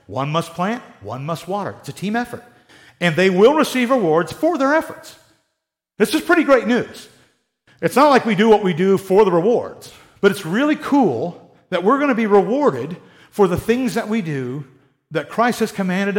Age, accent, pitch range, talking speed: 50-69, American, 165-225 Hz, 200 wpm